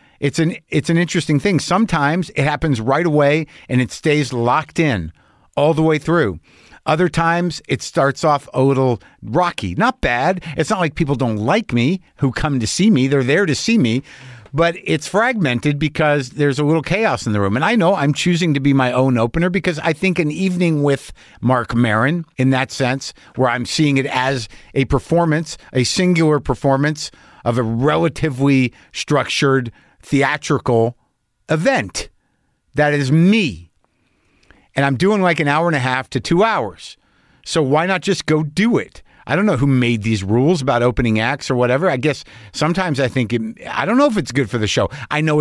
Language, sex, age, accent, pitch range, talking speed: English, male, 50-69, American, 130-165 Hz, 190 wpm